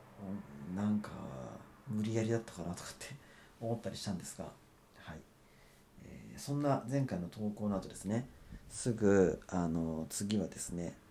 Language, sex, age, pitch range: Japanese, male, 40-59, 85-110 Hz